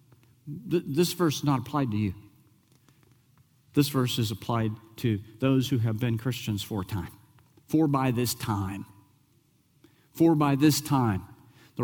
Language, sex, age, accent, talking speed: English, male, 50-69, American, 145 wpm